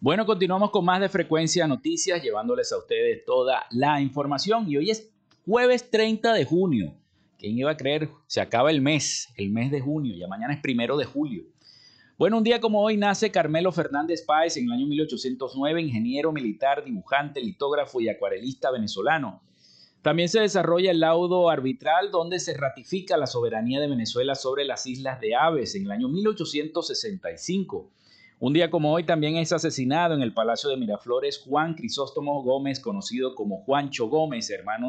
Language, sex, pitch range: Spanish, male, 140-210 Hz